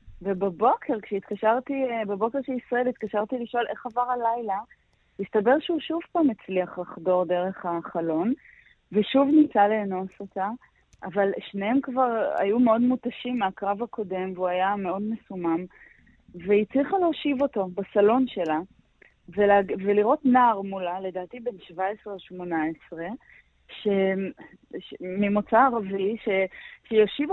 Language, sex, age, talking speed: Hebrew, female, 20-39, 115 wpm